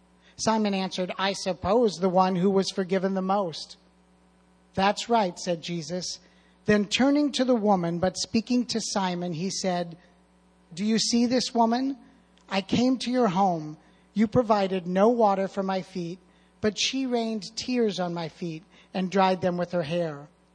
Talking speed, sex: 165 wpm, male